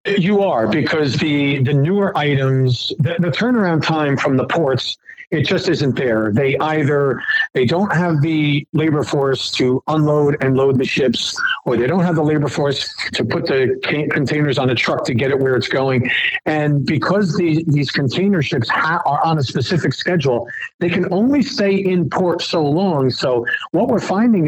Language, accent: English, American